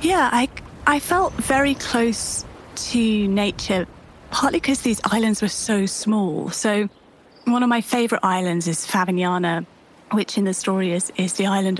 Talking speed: 160 wpm